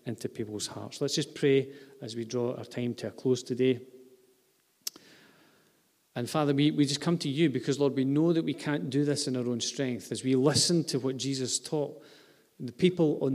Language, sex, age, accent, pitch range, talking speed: English, male, 40-59, British, 135-170 Hz, 205 wpm